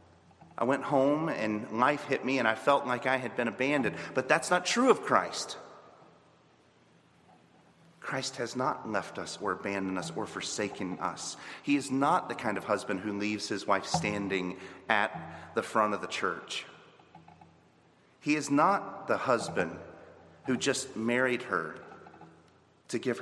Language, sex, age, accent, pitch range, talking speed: English, male, 30-49, American, 100-150 Hz, 160 wpm